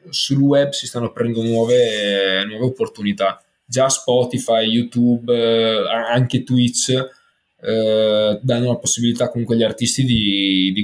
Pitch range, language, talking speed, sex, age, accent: 105-125 Hz, Italian, 135 wpm, male, 20-39, native